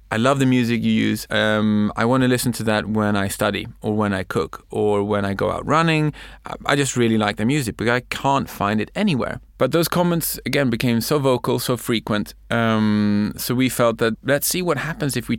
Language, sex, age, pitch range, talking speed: English, male, 30-49, 110-135 Hz, 225 wpm